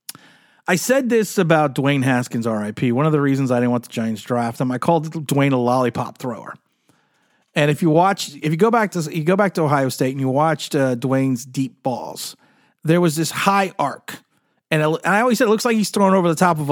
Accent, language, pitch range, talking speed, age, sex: American, English, 150-215 Hz, 235 wpm, 30-49, male